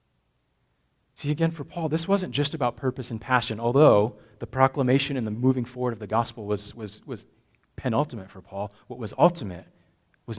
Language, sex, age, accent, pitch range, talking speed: English, male, 30-49, American, 95-125 Hz, 180 wpm